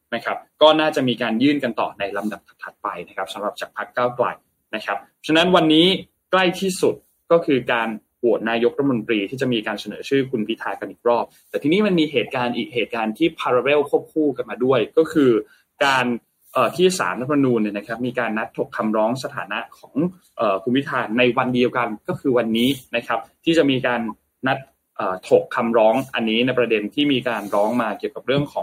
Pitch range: 115-160 Hz